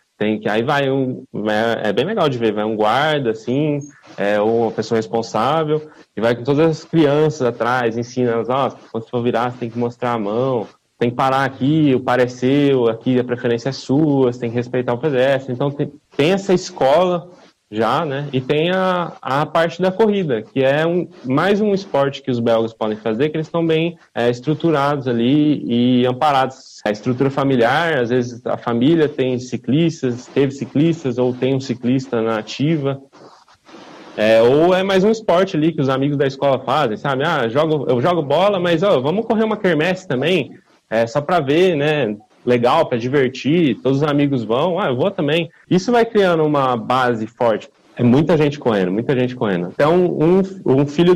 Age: 20-39